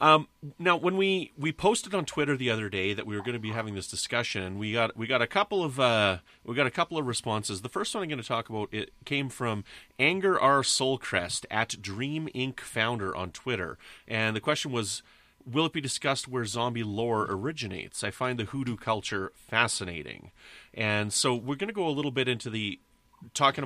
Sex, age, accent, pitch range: male, 30-49, American, 105-140 Hz